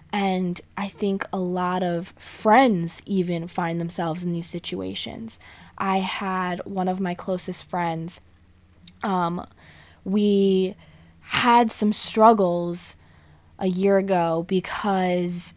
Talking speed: 110 wpm